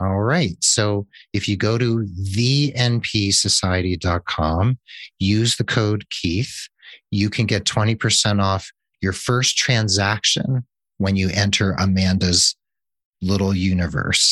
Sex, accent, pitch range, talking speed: male, American, 90-115 Hz, 110 wpm